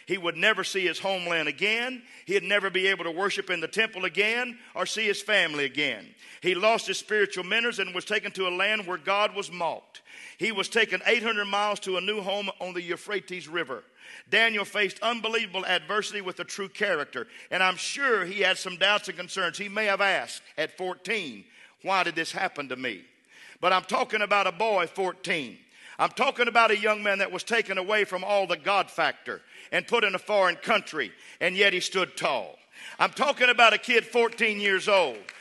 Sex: male